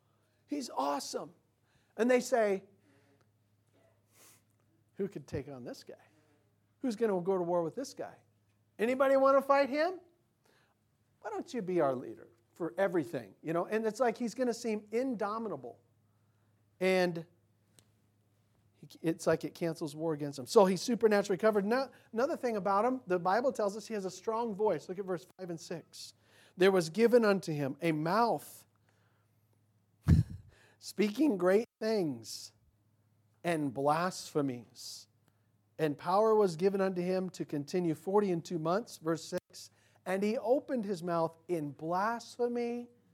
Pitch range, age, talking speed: 130-215 Hz, 40-59, 150 wpm